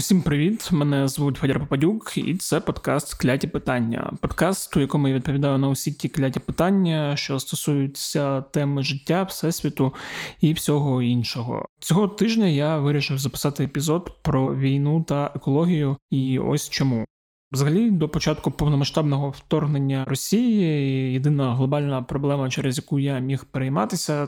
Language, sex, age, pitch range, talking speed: Ukrainian, male, 20-39, 135-155 Hz, 140 wpm